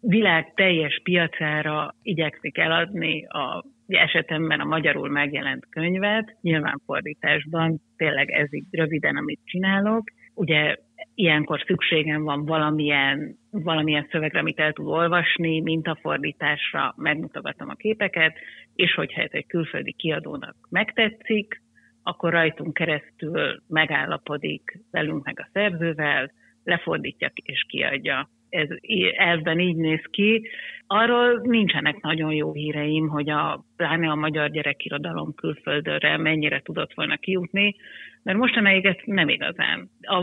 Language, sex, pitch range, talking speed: Hungarian, female, 155-195 Hz, 120 wpm